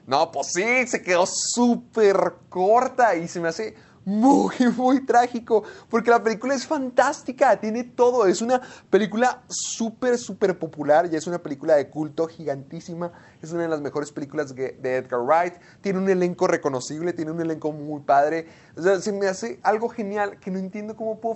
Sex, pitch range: male, 145-200 Hz